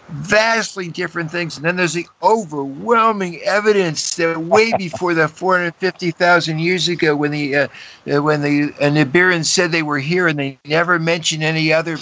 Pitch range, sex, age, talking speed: 145-180 Hz, male, 60-79, 165 wpm